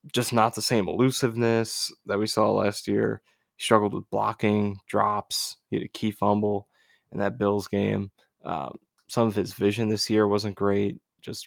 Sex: male